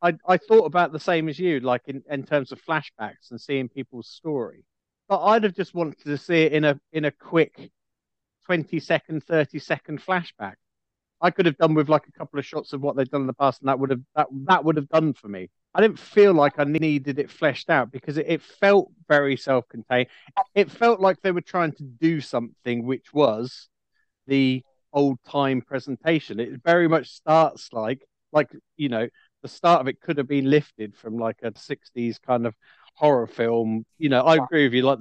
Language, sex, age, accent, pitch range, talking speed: English, male, 40-59, British, 130-160 Hz, 215 wpm